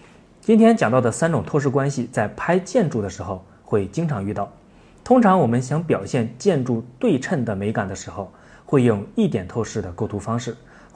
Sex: male